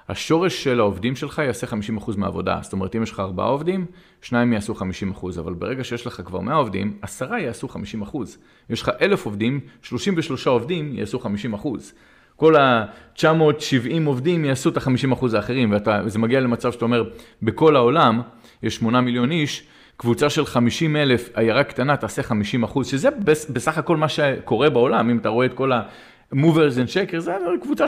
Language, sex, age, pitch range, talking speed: Hebrew, male, 40-59, 110-150 Hz, 170 wpm